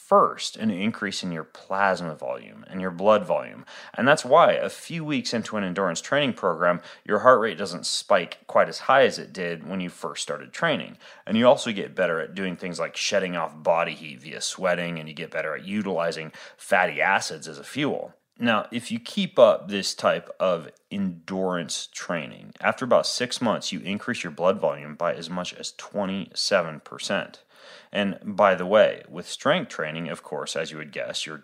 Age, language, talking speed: 30-49, English, 195 wpm